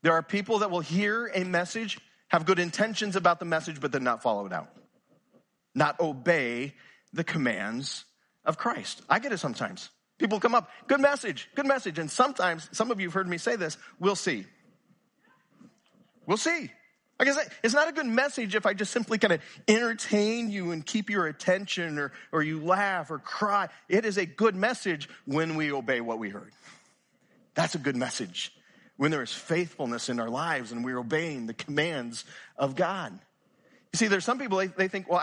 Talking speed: 195 wpm